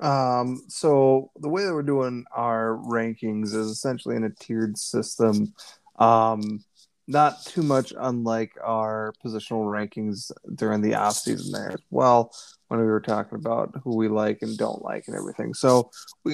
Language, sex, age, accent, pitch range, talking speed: English, male, 20-39, American, 110-130 Hz, 160 wpm